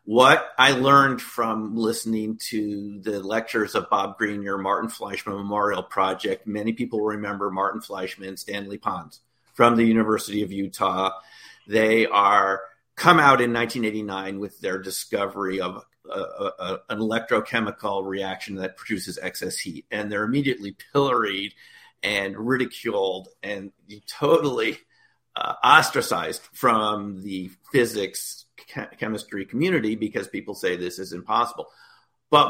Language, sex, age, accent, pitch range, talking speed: English, male, 50-69, American, 100-120 Hz, 135 wpm